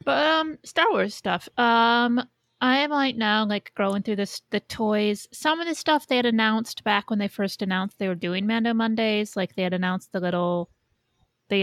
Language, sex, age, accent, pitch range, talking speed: English, female, 30-49, American, 185-235 Hz, 210 wpm